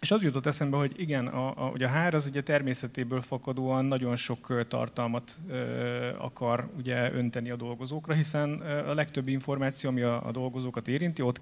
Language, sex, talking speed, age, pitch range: Hungarian, male, 175 wpm, 30-49, 120-140 Hz